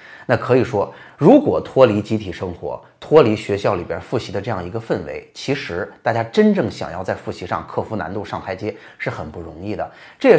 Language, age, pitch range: Chinese, 30-49, 100-135 Hz